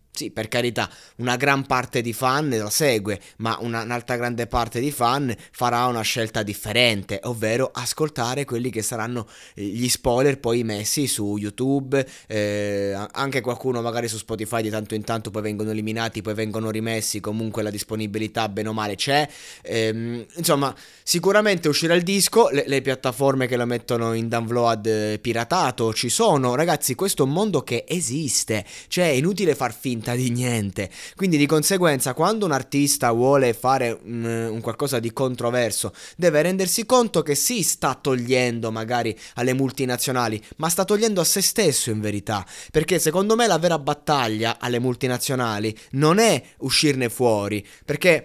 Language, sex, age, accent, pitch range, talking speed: Italian, male, 20-39, native, 110-140 Hz, 160 wpm